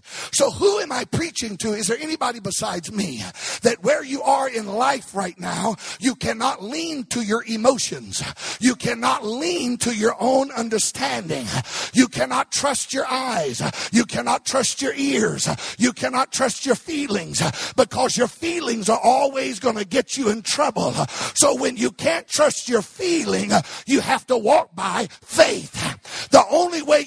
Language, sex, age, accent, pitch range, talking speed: English, male, 50-69, American, 225-290 Hz, 165 wpm